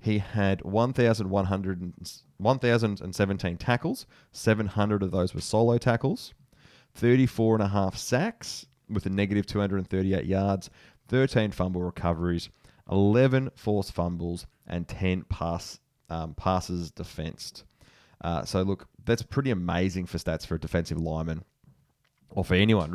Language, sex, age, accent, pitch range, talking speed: English, male, 30-49, Australian, 85-100 Hz, 125 wpm